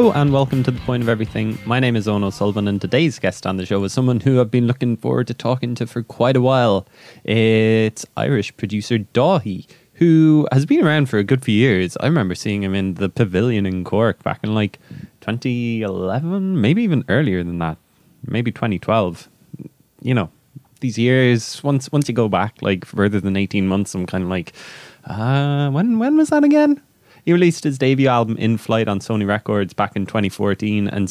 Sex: male